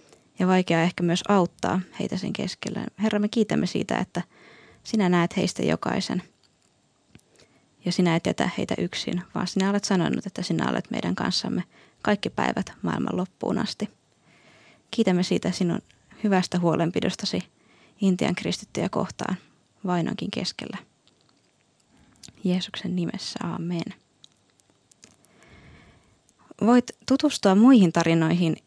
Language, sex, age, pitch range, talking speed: Finnish, female, 20-39, 175-215 Hz, 110 wpm